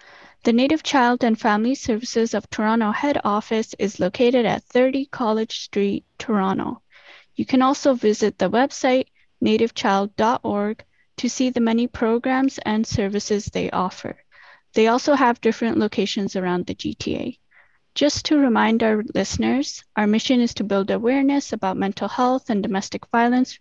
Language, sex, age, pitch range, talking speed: English, female, 10-29, 210-255 Hz, 145 wpm